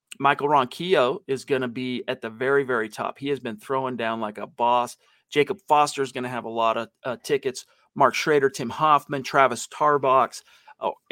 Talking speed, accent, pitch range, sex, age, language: 200 wpm, American, 130-170 Hz, male, 40-59, English